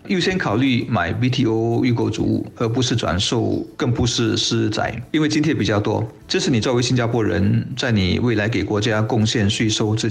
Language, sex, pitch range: Chinese, male, 105-125 Hz